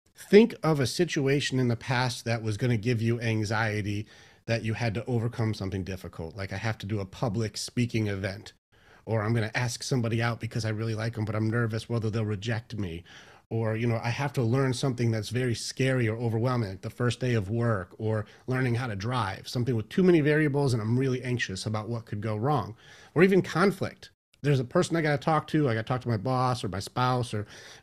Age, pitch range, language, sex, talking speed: 30-49, 110-130 Hz, English, male, 235 wpm